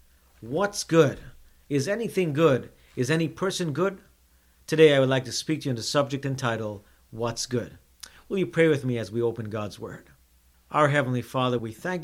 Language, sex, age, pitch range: English, male, 50-69, 120-165 Hz